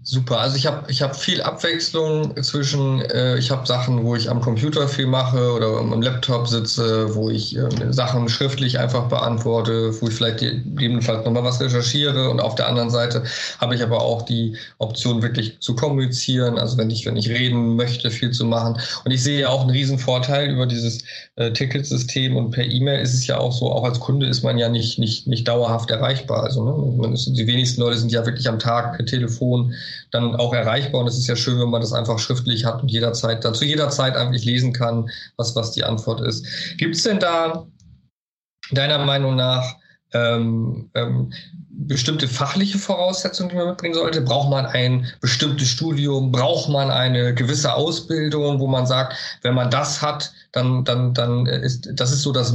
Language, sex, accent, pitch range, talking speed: German, male, German, 120-135 Hz, 195 wpm